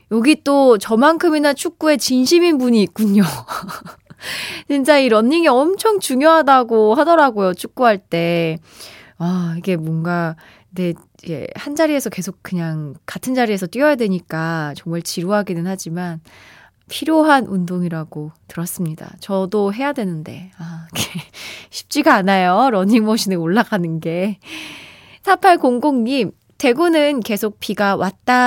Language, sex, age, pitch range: Korean, female, 20-39, 180-270 Hz